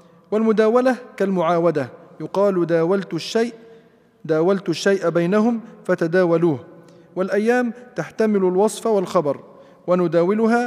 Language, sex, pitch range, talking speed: Arabic, male, 165-210 Hz, 80 wpm